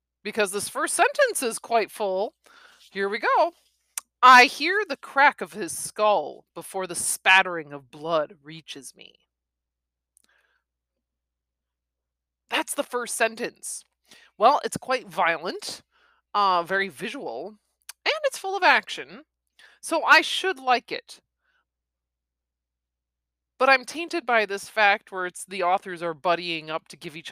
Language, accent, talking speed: English, American, 135 wpm